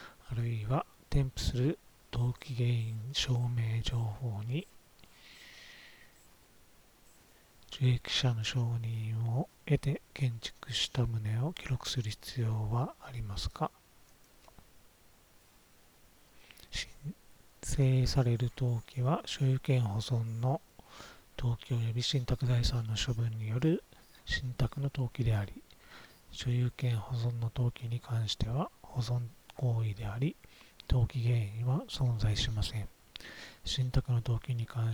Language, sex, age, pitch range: Japanese, male, 40-59, 115-130 Hz